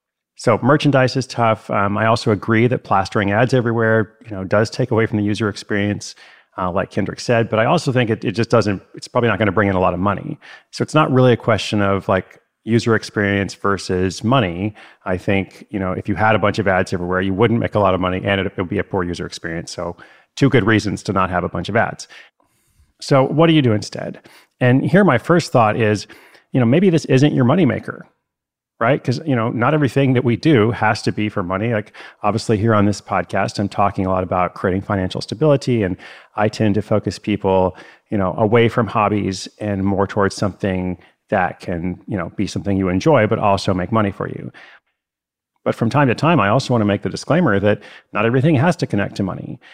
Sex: male